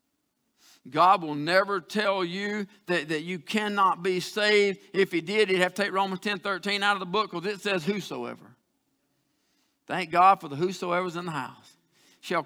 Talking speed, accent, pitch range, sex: 185 wpm, American, 195-255 Hz, male